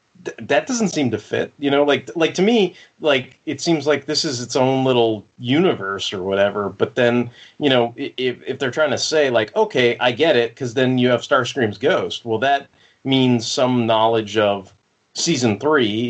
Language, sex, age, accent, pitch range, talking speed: English, male, 30-49, American, 105-135 Hz, 195 wpm